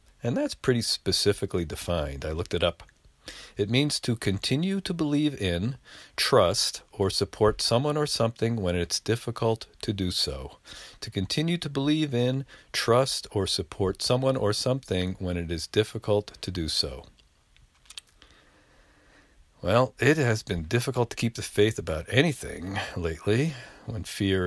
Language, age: English, 50-69